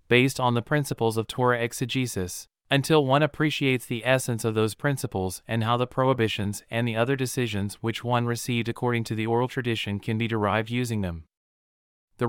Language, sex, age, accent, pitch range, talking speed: English, male, 30-49, American, 110-130 Hz, 180 wpm